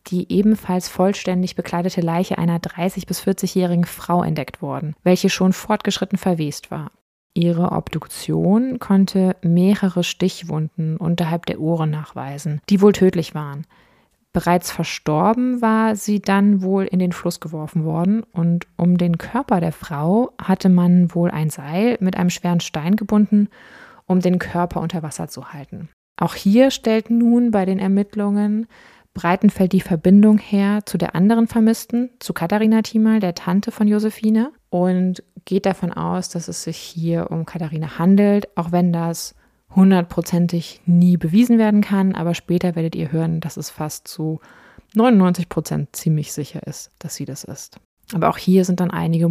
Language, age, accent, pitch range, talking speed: German, 20-39, German, 170-200 Hz, 160 wpm